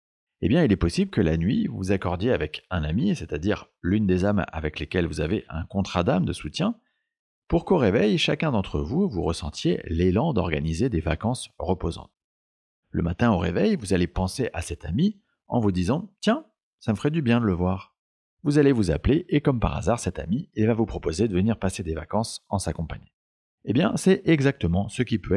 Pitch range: 80-115 Hz